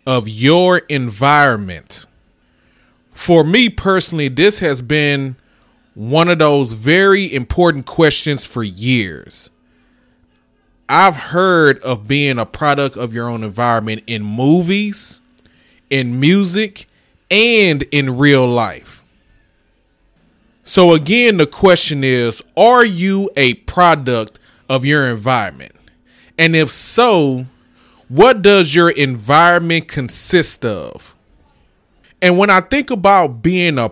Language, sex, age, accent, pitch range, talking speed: English, male, 20-39, American, 120-175 Hz, 110 wpm